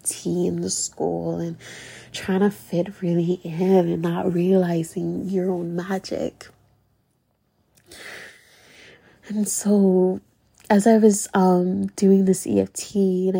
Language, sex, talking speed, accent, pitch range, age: English, female, 110 wpm, American, 175-200 Hz, 20-39